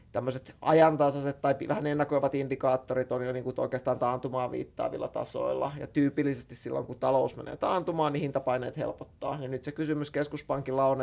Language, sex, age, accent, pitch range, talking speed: Finnish, male, 20-39, native, 130-145 Hz, 160 wpm